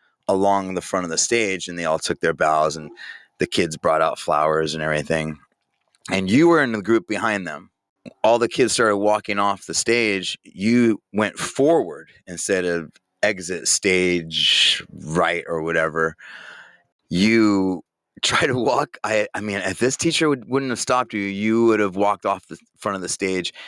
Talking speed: 180 wpm